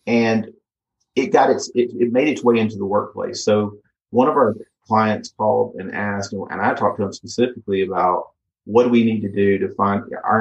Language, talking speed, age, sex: English, 210 wpm, 30-49, male